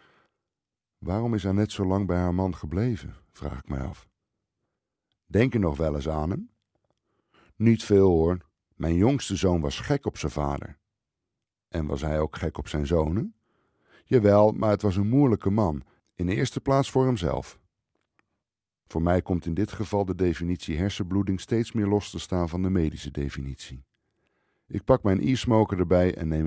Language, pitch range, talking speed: Dutch, 80-105 Hz, 175 wpm